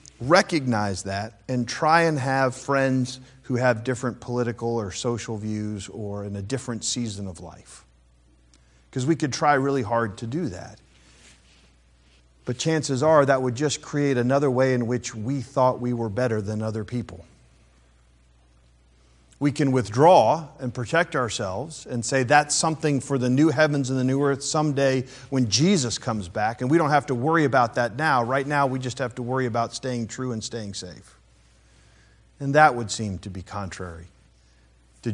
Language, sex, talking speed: English, male, 175 wpm